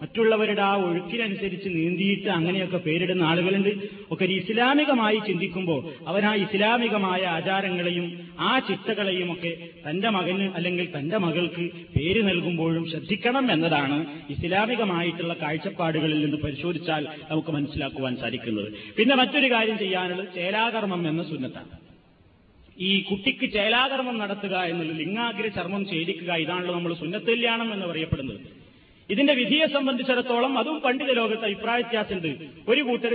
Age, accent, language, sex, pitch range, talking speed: 30-49, native, Malayalam, male, 165-220 Hz, 110 wpm